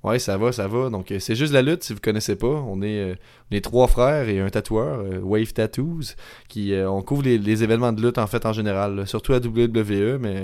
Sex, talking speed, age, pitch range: male, 260 wpm, 20-39, 100-115 Hz